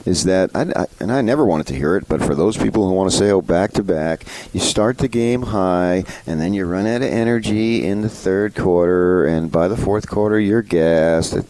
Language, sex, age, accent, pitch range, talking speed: English, male, 40-59, American, 80-115 Hz, 230 wpm